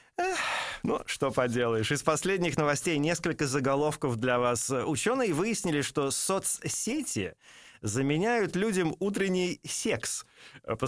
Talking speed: 105 wpm